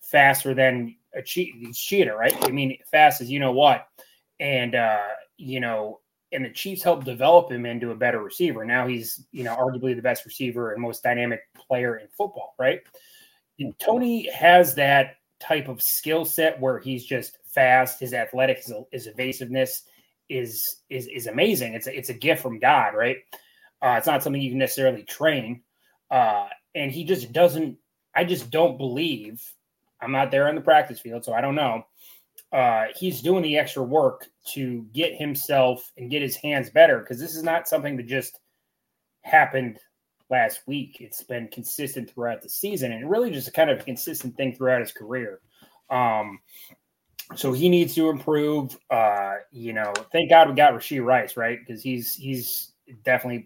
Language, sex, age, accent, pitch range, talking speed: English, male, 20-39, American, 125-160 Hz, 180 wpm